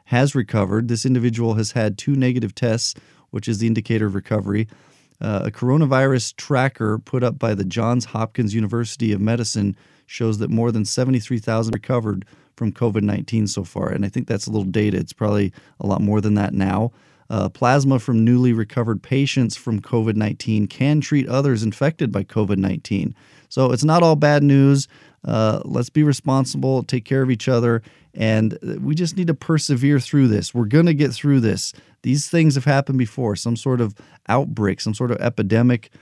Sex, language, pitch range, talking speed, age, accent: male, English, 105-130 Hz, 180 wpm, 40-59, American